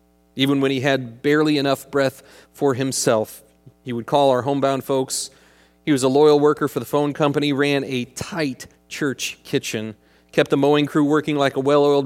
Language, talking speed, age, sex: English, 185 wpm, 40-59, male